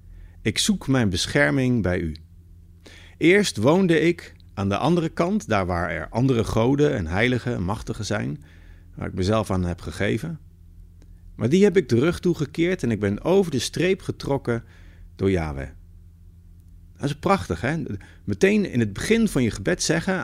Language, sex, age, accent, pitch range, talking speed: Dutch, male, 50-69, Dutch, 85-140 Hz, 170 wpm